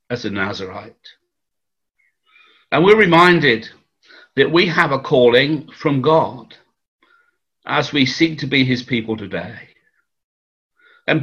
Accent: British